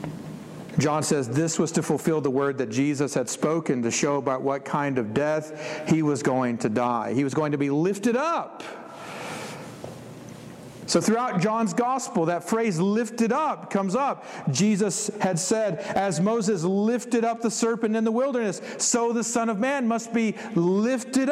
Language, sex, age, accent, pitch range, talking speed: English, male, 50-69, American, 170-235 Hz, 170 wpm